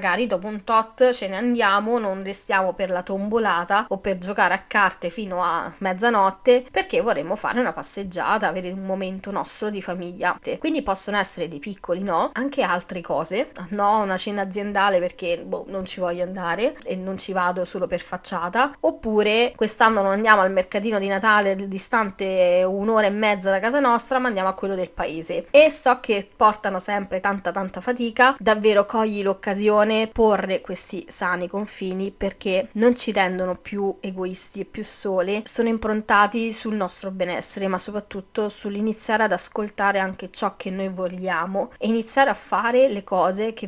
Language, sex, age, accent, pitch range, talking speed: Italian, female, 20-39, native, 185-225 Hz, 170 wpm